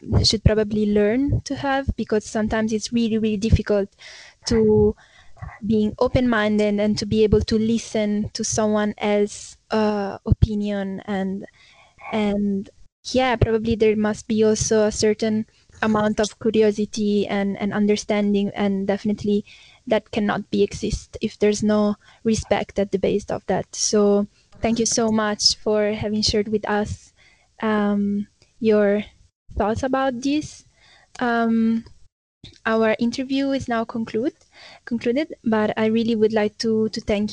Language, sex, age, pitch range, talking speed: English, female, 10-29, 210-230 Hz, 140 wpm